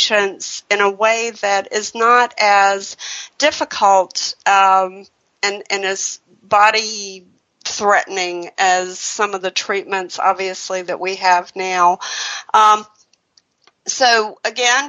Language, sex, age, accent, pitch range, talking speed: English, female, 50-69, American, 190-220 Hz, 105 wpm